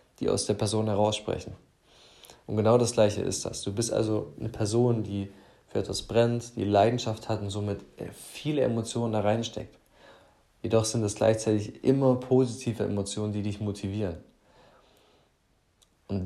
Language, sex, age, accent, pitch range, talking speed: German, male, 20-39, German, 100-115 Hz, 150 wpm